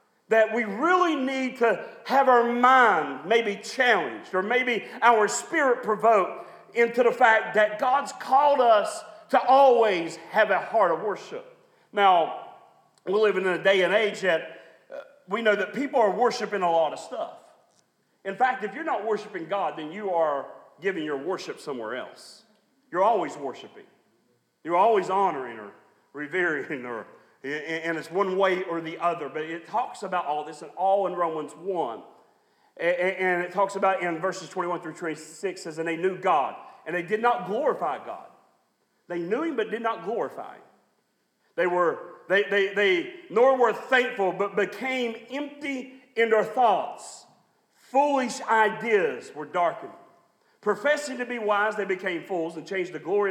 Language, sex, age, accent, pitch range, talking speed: English, male, 40-59, American, 180-255 Hz, 170 wpm